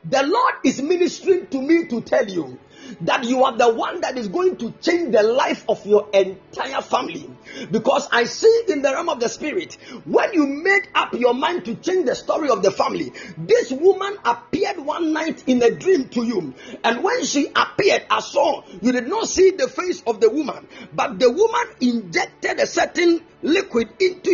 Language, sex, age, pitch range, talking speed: English, male, 40-59, 245-365 Hz, 200 wpm